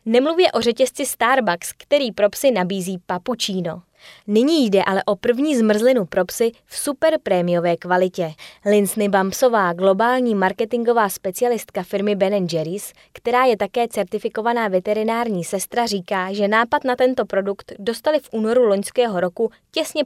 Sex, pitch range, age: female, 190-245 Hz, 20-39